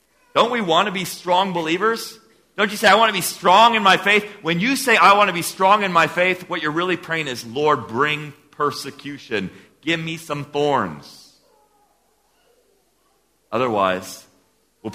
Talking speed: 175 wpm